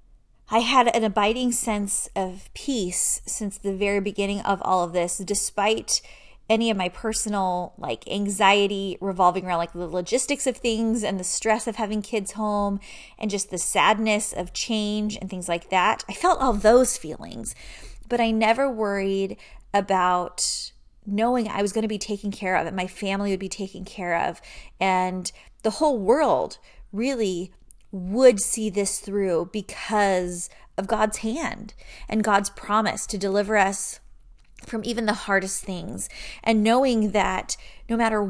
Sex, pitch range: female, 195-225 Hz